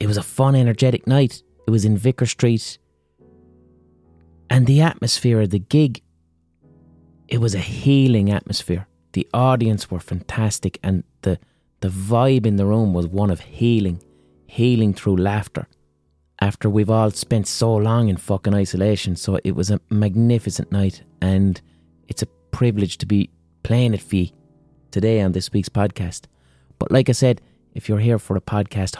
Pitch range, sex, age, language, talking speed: 90-110 Hz, male, 30-49, English, 165 wpm